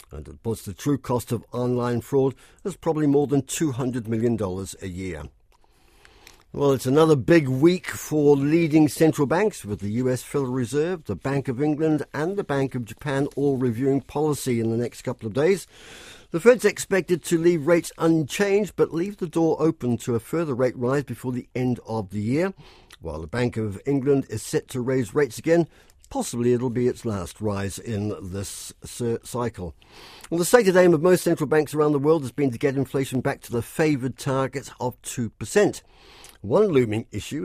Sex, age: male, 60-79